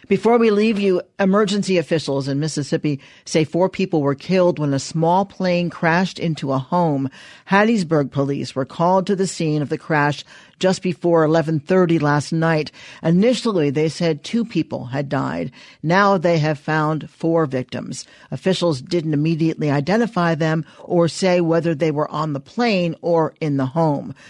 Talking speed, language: 165 wpm, English